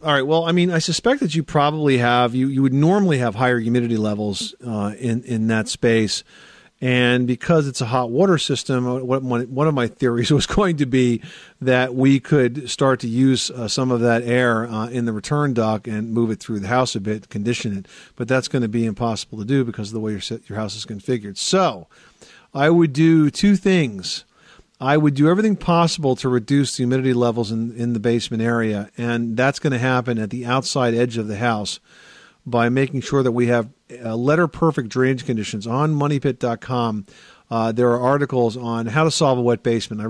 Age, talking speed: 50-69, 210 wpm